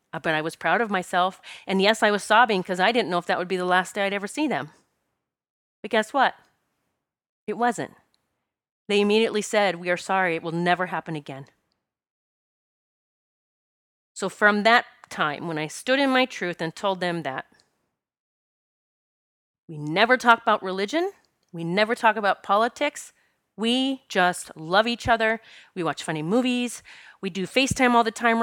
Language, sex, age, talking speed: English, female, 30-49, 170 wpm